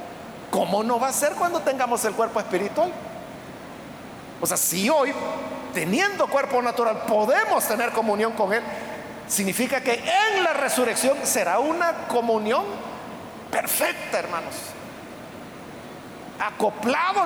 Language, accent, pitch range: Spanish, Mexican, 215-285 Hz